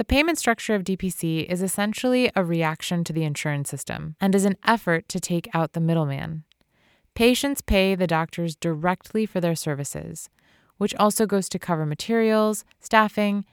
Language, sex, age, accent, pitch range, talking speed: English, female, 20-39, American, 165-220 Hz, 165 wpm